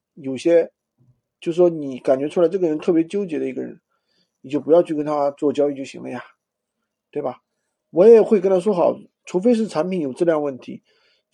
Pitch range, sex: 140-205 Hz, male